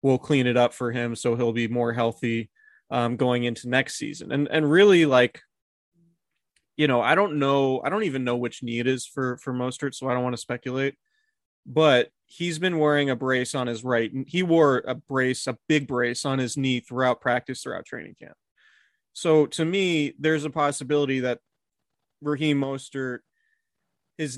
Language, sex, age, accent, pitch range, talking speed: English, male, 20-39, American, 120-140 Hz, 190 wpm